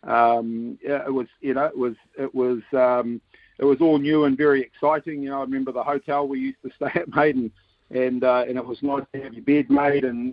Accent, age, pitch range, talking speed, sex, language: Australian, 50-69, 120-140 Hz, 250 wpm, male, English